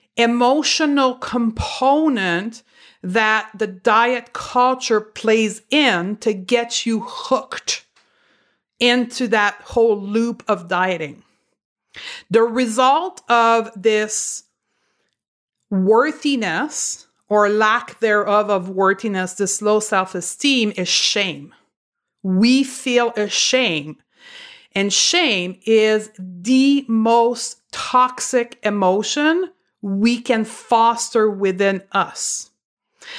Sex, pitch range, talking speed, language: female, 200-245 Hz, 90 wpm, English